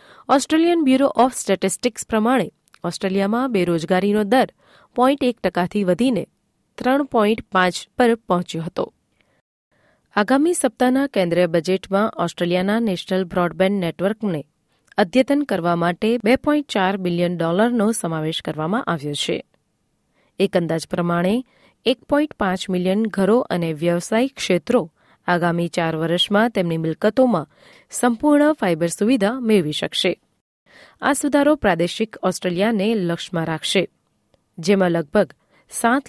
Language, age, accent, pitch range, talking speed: Gujarati, 30-49, native, 175-235 Hz, 105 wpm